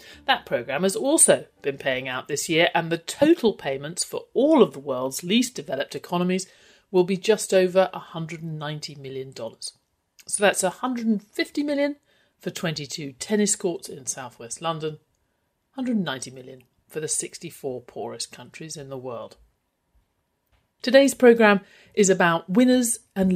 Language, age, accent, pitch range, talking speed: English, 50-69, British, 150-210 Hz, 140 wpm